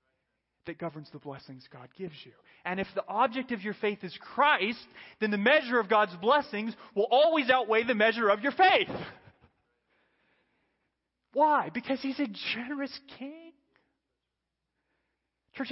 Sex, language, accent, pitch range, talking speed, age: male, English, American, 170-245 Hz, 140 wpm, 30-49